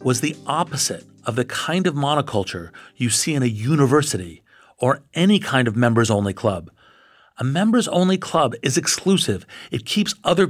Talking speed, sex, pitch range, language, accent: 155 wpm, male, 110-155 Hz, English, American